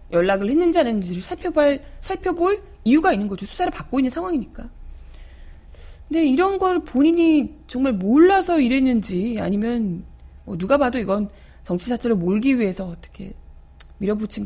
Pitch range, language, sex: 185-290 Hz, Korean, female